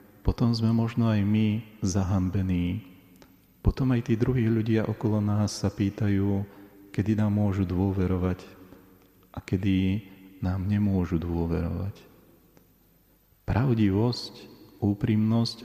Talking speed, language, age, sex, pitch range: 100 wpm, Slovak, 40-59, male, 95-110 Hz